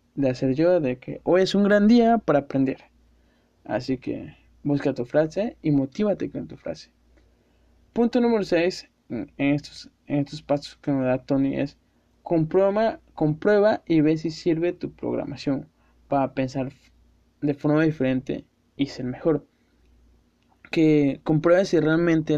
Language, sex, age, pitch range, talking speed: Spanish, male, 20-39, 135-165 Hz, 145 wpm